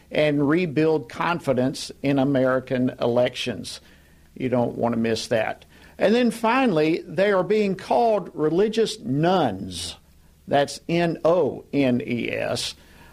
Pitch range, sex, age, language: 125-170 Hz, male, 50-69, English